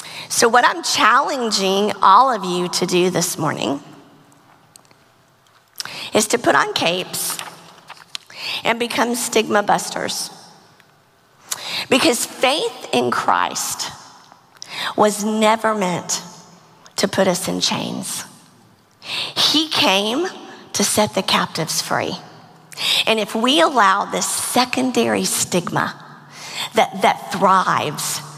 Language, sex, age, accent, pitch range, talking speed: English, female, 50-69, American, 185-240 Hz, 105 wpm